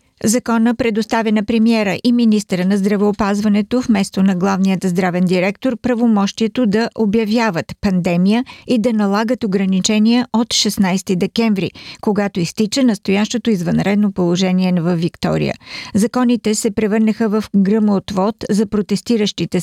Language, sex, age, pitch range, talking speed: Bulgarian, female, 50-69, 195-230 Hz, 120 wpm